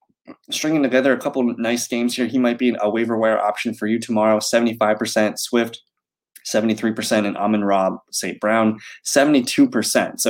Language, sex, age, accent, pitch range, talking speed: English, male, 20-39, American, 105-135 Hz, 180 wpm